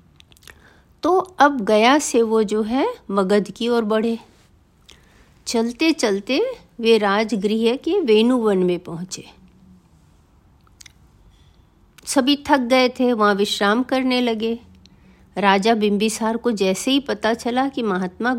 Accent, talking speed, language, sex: native, 115 wpm, Hindi, female